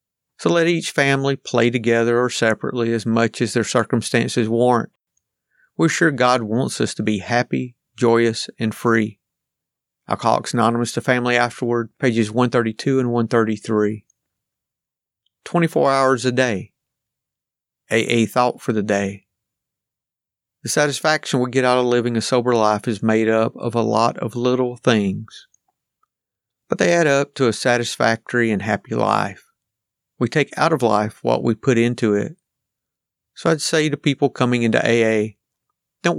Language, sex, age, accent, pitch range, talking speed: English, male, 50-69, American, 110-130 Hz, 150 wpm